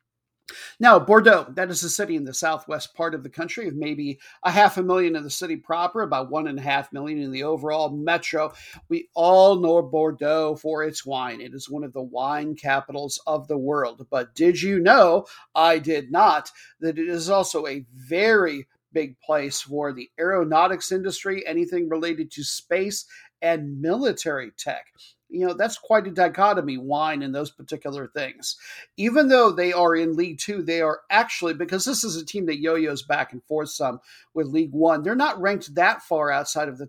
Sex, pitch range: male, 155-190 Hz